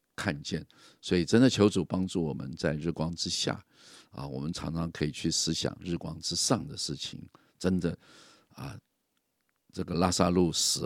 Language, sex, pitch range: Chinese, male, 80-100 Hz